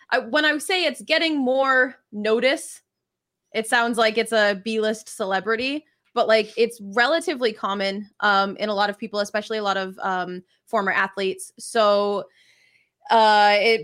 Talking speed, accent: 150 wpm, American